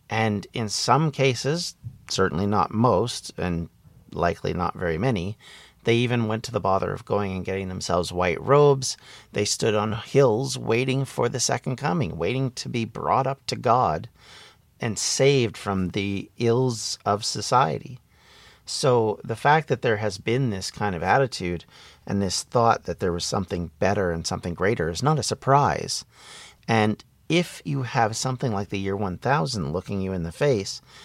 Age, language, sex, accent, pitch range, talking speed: 40-59, English, male, American, 95-125 Hz, 170 wpm